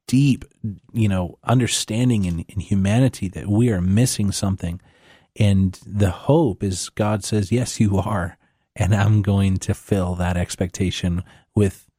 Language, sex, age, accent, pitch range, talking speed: English, male, 30-49, American, 90-105 Hz, 145 wpm